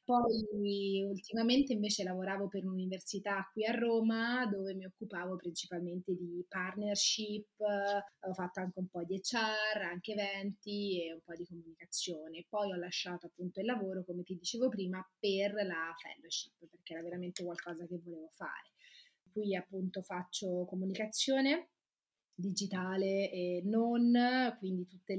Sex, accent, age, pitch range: female, native, 20-39, 175-205 Hz